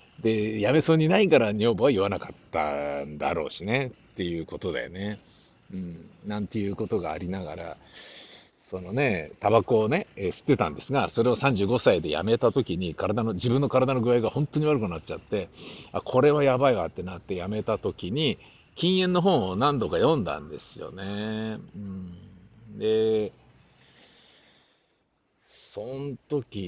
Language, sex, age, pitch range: Japanese, male, 60-79, 95-130 Hz